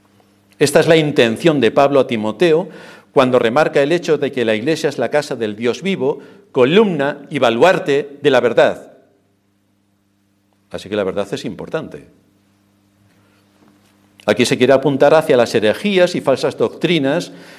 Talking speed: 150 wpm